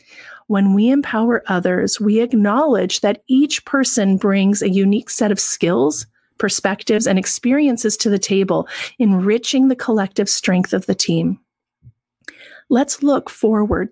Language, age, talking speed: English, 40-59, 135 wpm